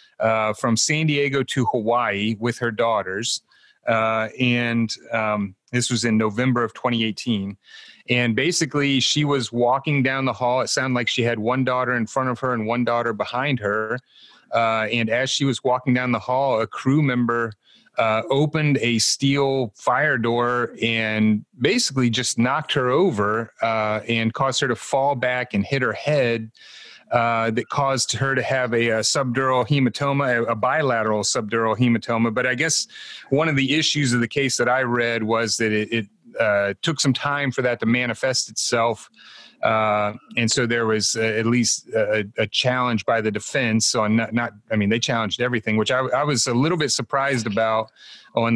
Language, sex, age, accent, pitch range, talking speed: English, male, 30-49, American, 110-130 Hz, 185 wpm